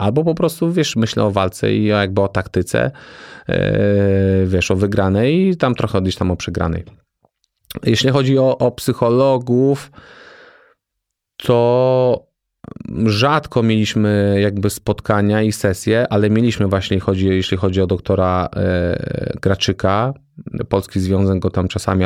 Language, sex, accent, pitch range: Polish, male, native, 95-125 Hz